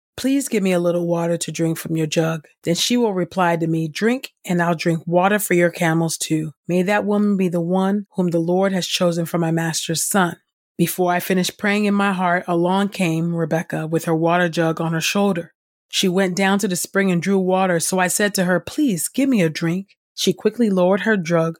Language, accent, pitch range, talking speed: English, American, 165-200 Hz, 230 wpm